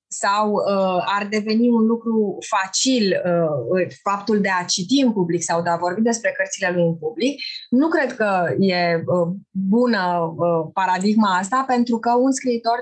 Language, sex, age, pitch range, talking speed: Romanian, female, 20-39, 190-255 Hz, 150 wpm